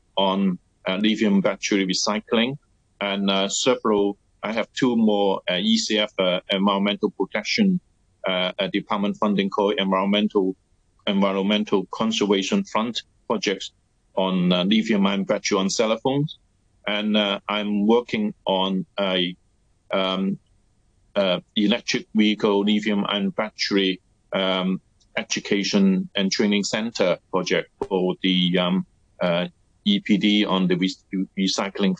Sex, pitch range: male, 95-110 Hz